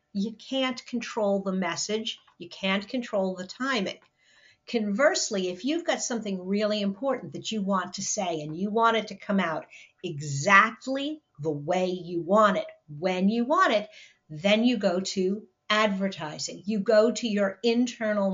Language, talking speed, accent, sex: English, 160 wpm, American, female